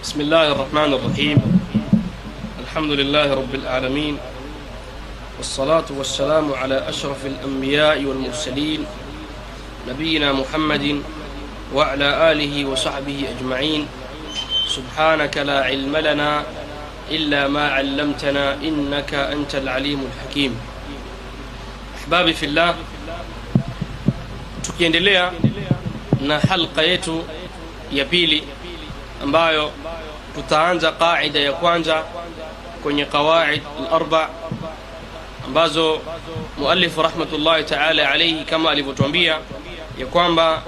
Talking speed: 80 wpm